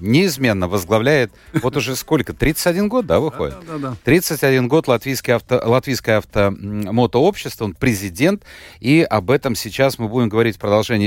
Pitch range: 100-140 Hz